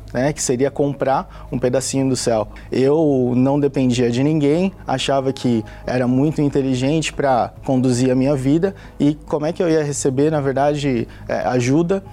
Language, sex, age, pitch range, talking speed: Portuguese, male, 20-39, 130-155 Hz, 165 wpm